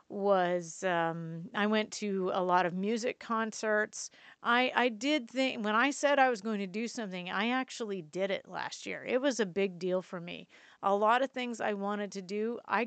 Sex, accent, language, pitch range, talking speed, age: female, American, English, 195-235 Hz, 210 wpm, 40-59